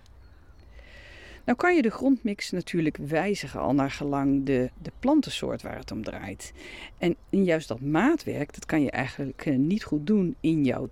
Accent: Dutch